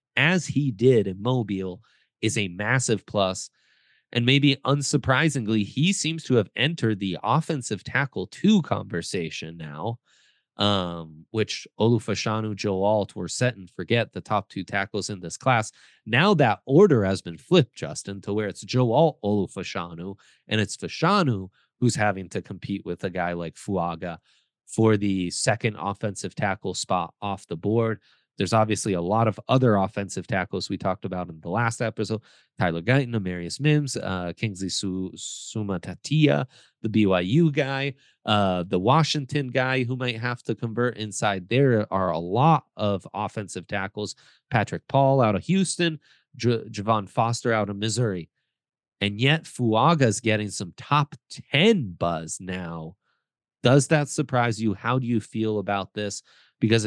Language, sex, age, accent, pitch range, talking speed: English, male, 30-49, American, 95-130 Hz, 155 wpm